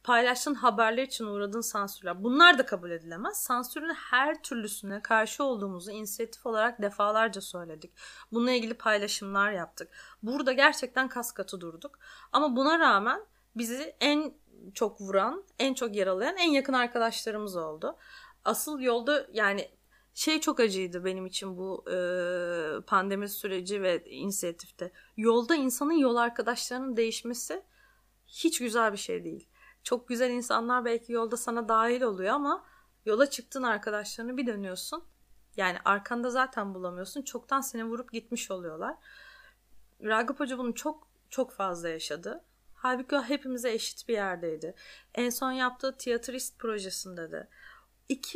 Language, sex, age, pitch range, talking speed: Turkish, female, 30-49, 200-260 Hz, 130 wpm